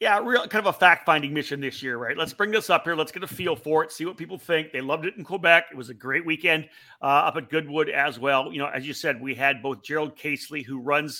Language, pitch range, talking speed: English, 135-165 Hz, 285 wpm